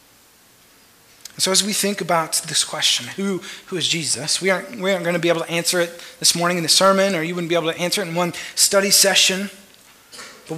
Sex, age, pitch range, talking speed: male, 30-49, 165-205 Hz, 225 wpm